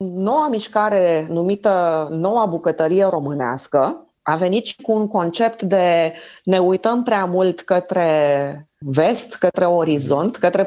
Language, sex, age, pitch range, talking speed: Romanian, female, 30-49, 170-210 Hz, 125 wpm